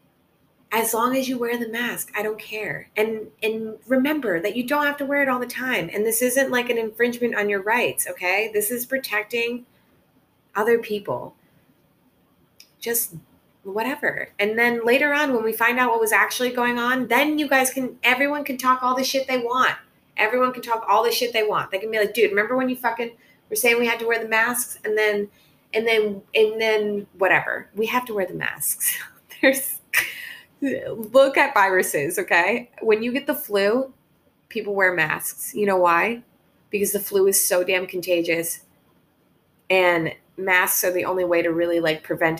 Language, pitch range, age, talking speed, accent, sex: English, 185-245 Hz, 30-49, 190 wpm, American, female